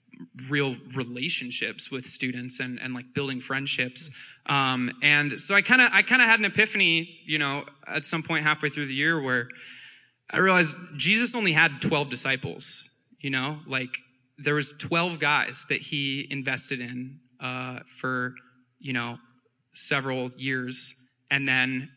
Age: 20-39